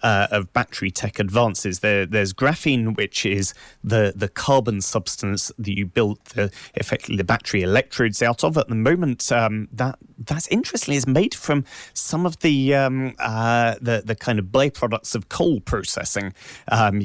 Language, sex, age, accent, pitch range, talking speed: English, male, 30-49, British, 100-120 Hz, 170 wpm